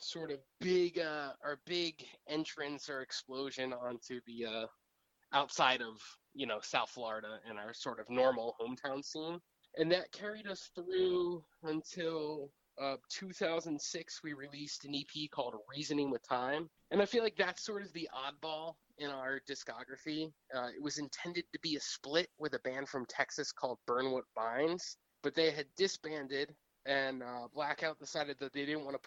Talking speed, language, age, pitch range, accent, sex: 170 wpm, English, 20-39, 135-165 Hz, American, male